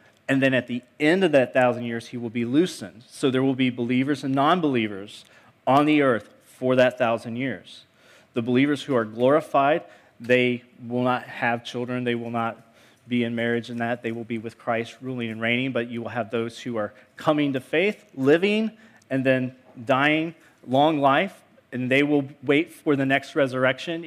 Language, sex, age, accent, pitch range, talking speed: English, male, 30-49, American, 115-140 Hz, 190 wpm